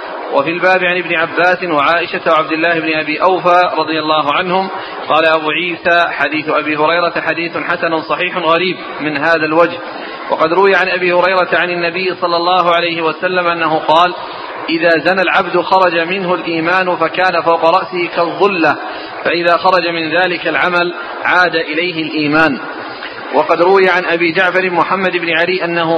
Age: 40-59